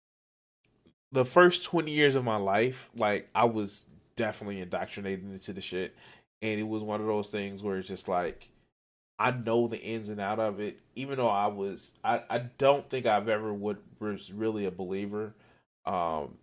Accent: American